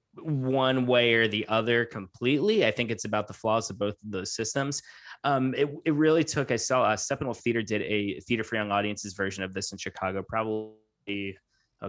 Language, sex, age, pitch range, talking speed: English, male, 20-39, 100-120 Hz, 220 wpm